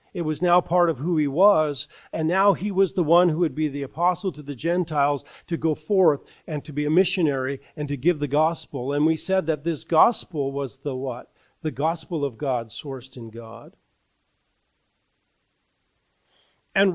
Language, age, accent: English, 50-69, American